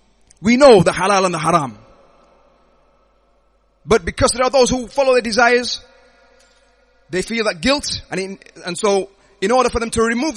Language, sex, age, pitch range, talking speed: English, male, 30-49, 180-240 Hz, 170 wpm